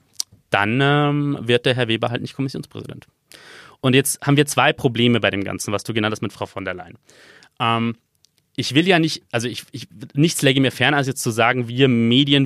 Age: 30-49